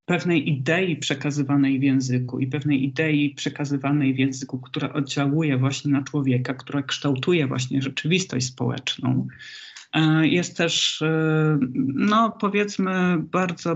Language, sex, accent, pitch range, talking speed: Polish, male, native, 135-160 Hz, 115 wpm